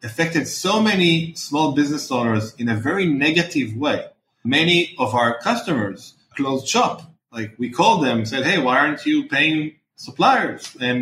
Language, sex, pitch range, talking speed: English, male, 120-165 Hz, 165 wpm